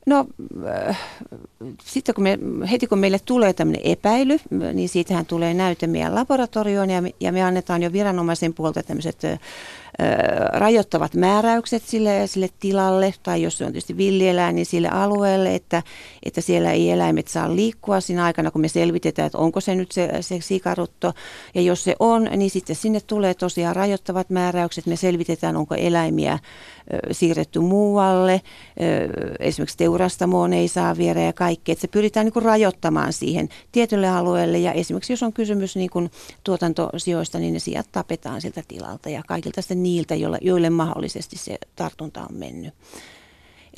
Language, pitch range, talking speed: Finnish, 170-200 Hz, 160 wpm